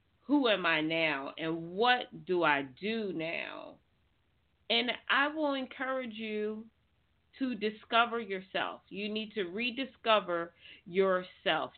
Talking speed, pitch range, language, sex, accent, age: 115 wpm, 185-240 Hz, English, female, American, 40-59